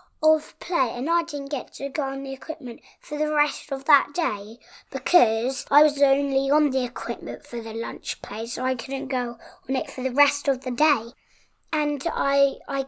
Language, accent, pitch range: English, British, 245-290 Hz